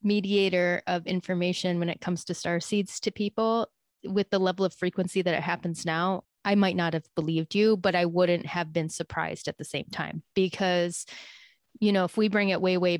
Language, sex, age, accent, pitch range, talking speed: English, female, 20-39, American, 170-195 Hz, 210 wpm